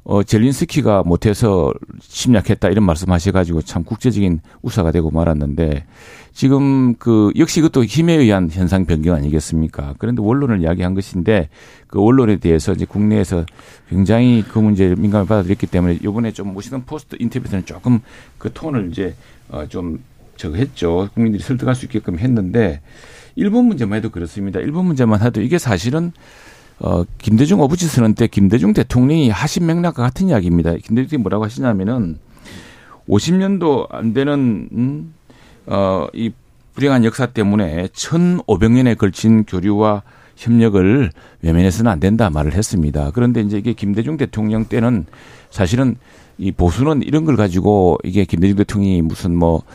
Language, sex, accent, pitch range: Korean, male, native, 90-125 Hz